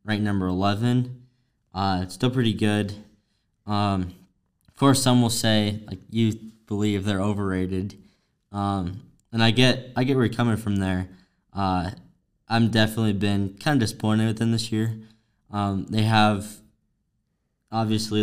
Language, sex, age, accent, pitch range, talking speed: English, male, 10-29, American, 95-110 Hz, 150 wpm